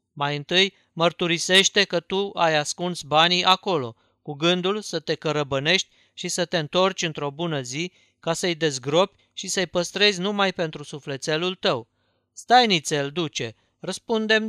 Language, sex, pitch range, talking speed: Romanian, male, 140-190 Hz, 145 wpm